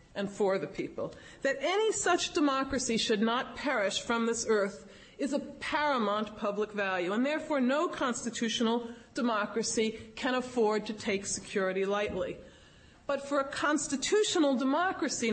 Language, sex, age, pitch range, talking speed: English, female, 40-59, 205-275 Hz, 135 wpm